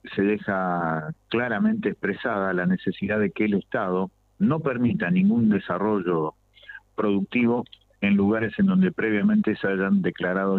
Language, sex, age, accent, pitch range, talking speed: Spanish, male, 50-69, Argentinian, 90-120 Hz, 130 wpm